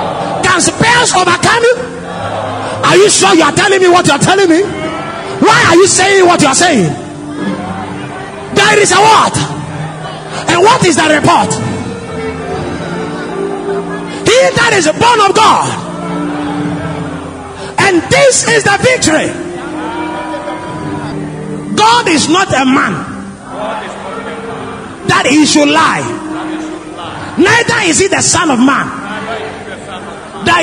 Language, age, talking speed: English, 30-49, 115 wpm